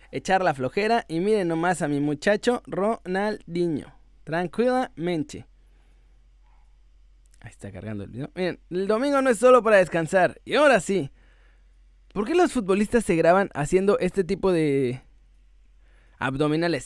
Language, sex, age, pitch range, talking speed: Spanish, male, 20-39, 135-195 Hz, 135 wpm